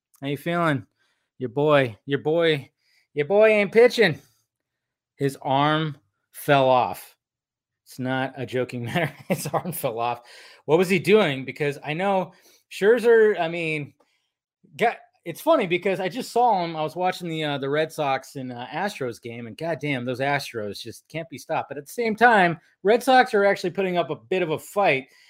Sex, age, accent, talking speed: male, 20-39, American, 185 wpm